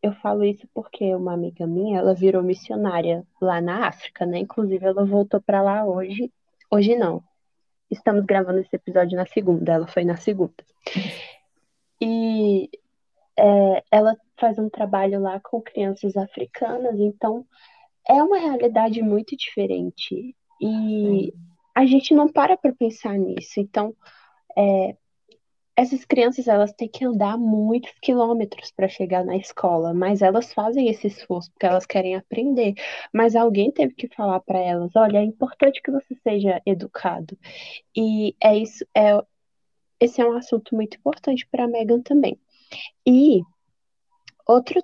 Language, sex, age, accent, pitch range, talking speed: Portuguese, female, 10-29, Brazilian, 190-235 Hz, 145 wpm